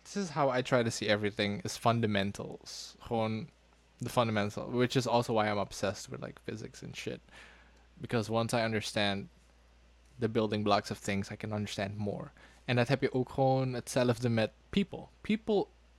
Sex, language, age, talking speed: male, Dutch, 20-39, 170 wpm